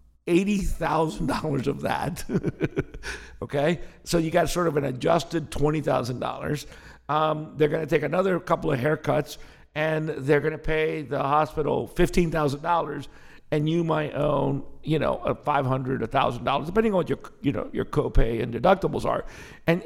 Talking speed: 130 wpm